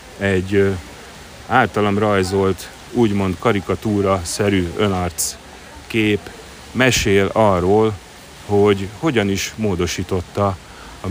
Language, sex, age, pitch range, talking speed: Hungarian, male, 30-49, 90-105 Hz, 75 wpm